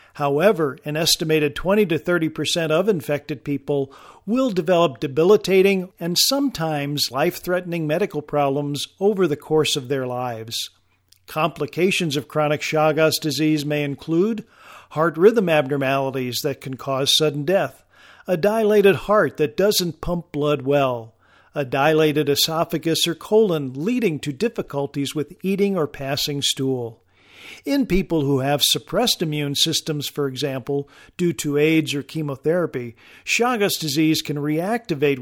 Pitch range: 145-185 Hz